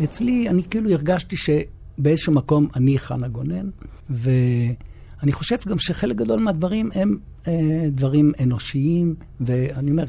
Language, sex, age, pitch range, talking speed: Hebrew, male, 60-79, 120-150 Hz, 125 wpm